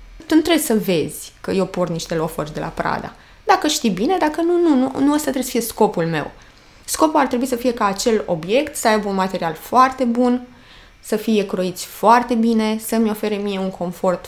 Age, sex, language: 20-39, female, Romanian